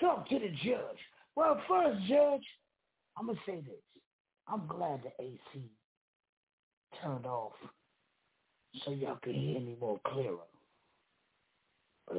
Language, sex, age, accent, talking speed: English, male, 60-79, American, 130 wpm